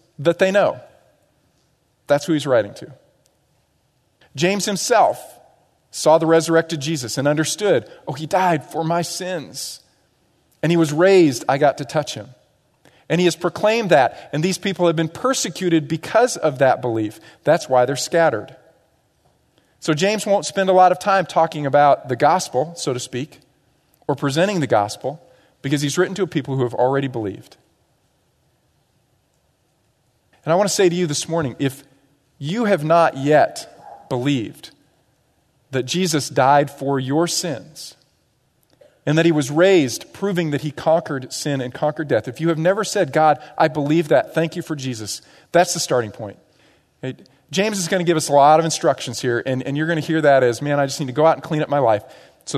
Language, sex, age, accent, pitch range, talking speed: English, male, 40-59, American, 140-170 Hz, 185 wpm